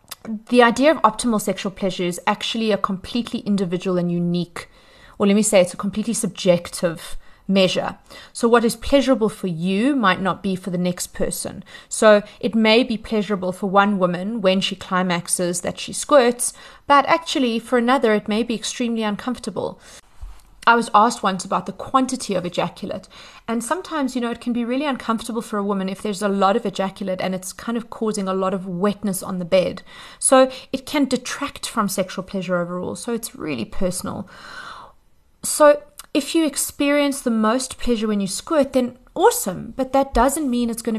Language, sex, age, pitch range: English, female, 30-49, 185-240 Hz